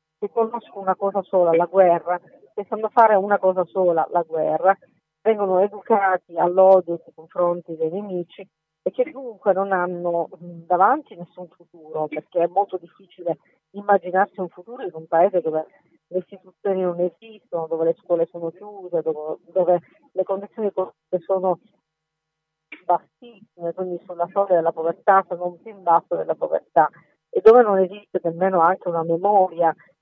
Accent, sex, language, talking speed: native, female, Italian, 150 wpm